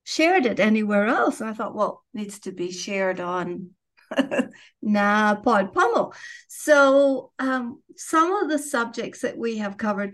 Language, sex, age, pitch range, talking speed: English, female, 50-69, 195-230 Hz, 160 wpm